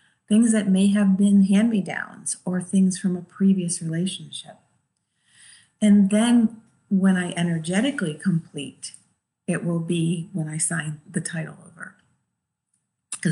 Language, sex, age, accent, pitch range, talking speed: English, female, 50-69, American, 165-200 Hz, 125 wpm